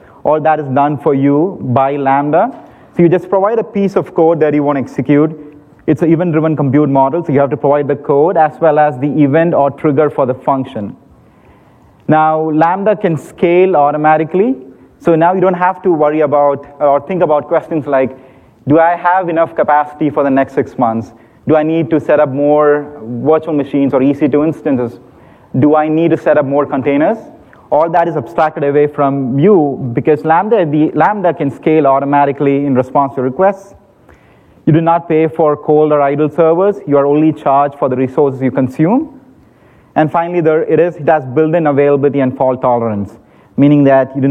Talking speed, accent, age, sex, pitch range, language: 190 wpm, Indian, 30-49, male, 135-160 Hz, English